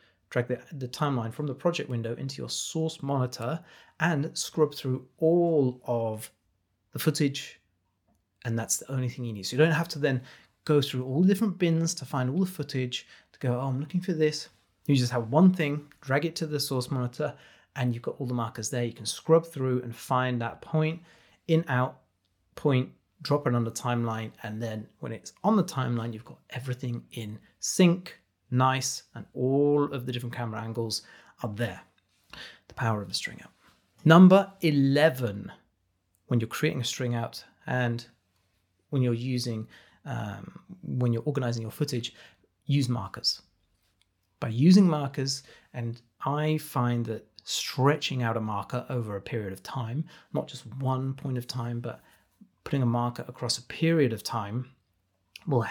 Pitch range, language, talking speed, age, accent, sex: 115-145 Hz, English, 175 wpm, 30-49, British, male